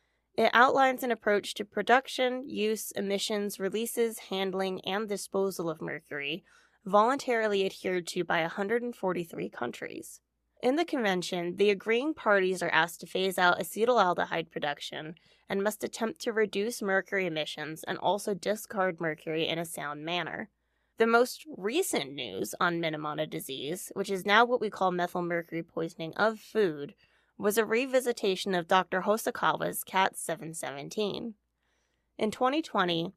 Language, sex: English, female